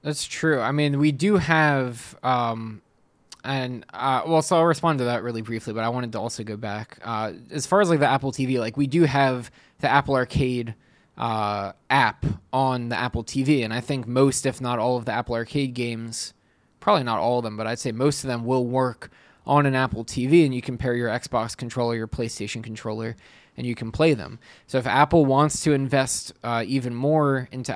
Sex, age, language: male, 20-39, English